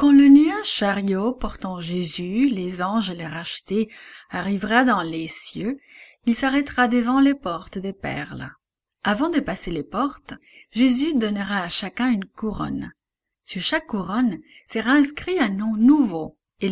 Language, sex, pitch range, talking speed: English, female, 190-275 Hz, 145 wpm